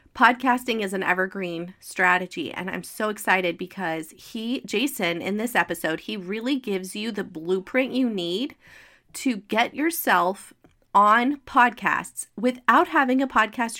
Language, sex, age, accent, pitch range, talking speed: English, female, 30-49, American, 185-245 Hz, 140 wpm